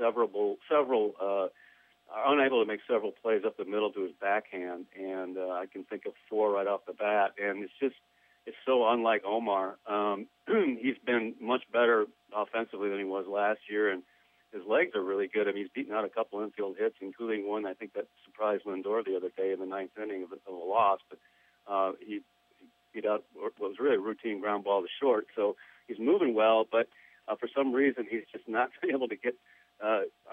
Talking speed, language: 220 wpm, English